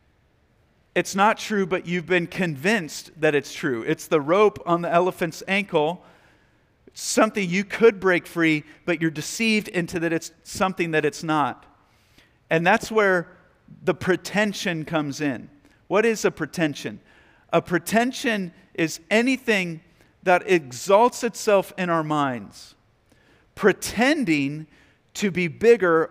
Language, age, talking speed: English, 50-69, 130 wpm